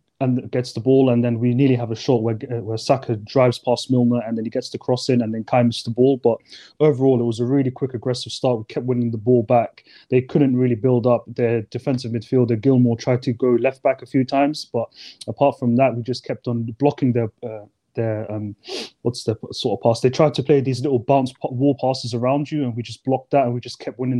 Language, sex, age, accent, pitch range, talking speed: English, male, 20-39, British, 120-135 Hz, 245 wpm